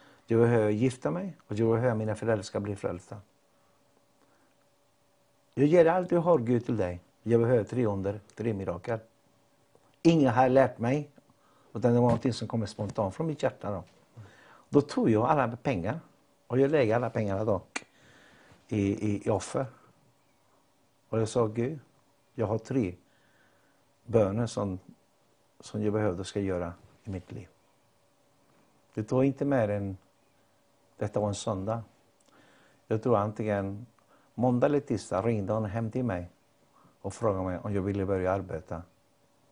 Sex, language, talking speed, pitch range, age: male, Swedish, 155 wpm, 95-125 Hz, 60-79